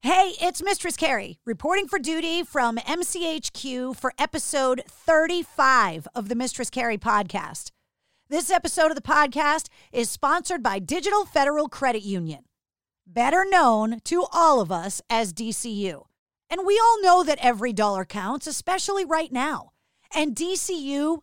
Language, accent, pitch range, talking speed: English, American, 240-325 Hz, 140 wpm